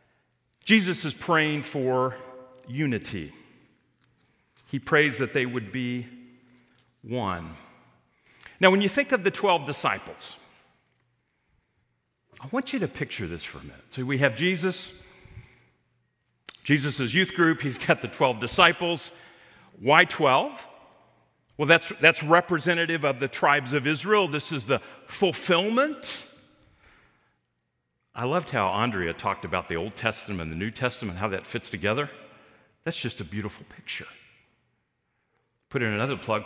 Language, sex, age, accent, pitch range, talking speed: English, male, 40-59, American, 125-180 Hz, 135 wpm